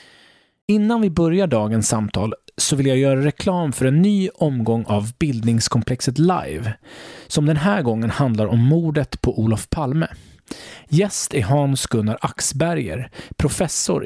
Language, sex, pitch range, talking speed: English, male, 115-160 Hz, 140 wpm